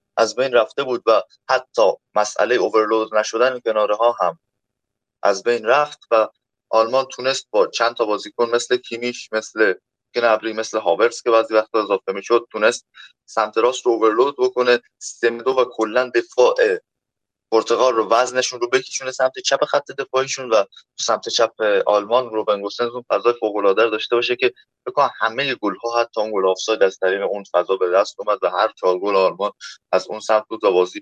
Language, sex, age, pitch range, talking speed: Persian, male, 20-39, 105-130 Hz, 170 wpm